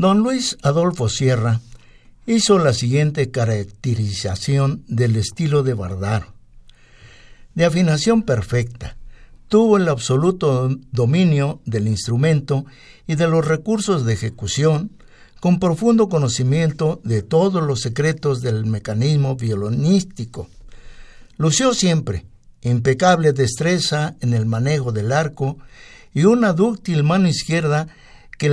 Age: 60-79